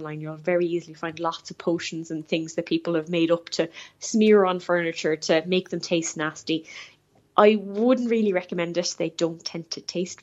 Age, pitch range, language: 10-29, 175-215 Hz, English